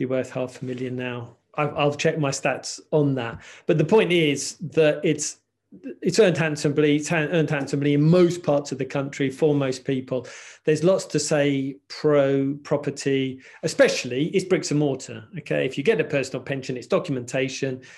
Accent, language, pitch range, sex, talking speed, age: British, English, 130-160 Hz, male, 175 wpm, 40-59